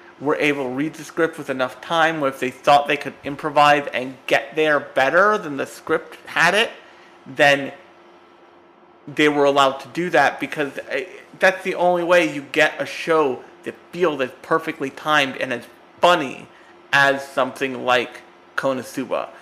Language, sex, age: English, male, 30-49